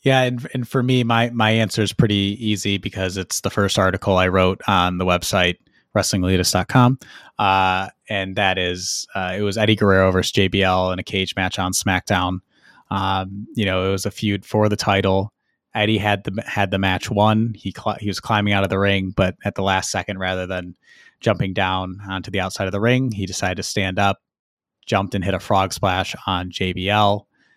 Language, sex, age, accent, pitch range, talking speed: English, male, 20-39, American, 95-105 Hz, 200 wpm